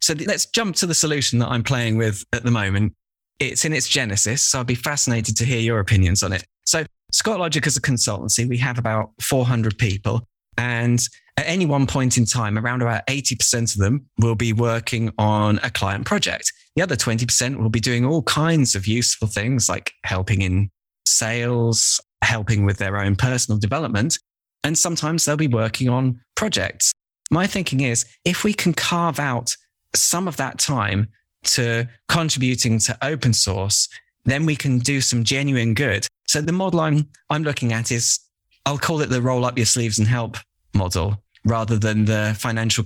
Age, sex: 20-39, male